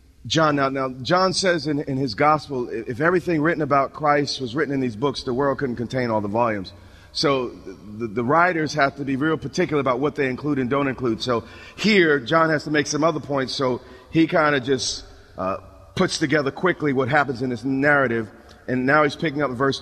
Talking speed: 220 wpm